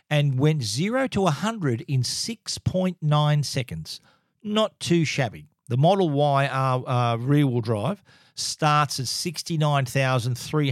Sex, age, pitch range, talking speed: male, 40-59, 120-150 Hz, 145 wpm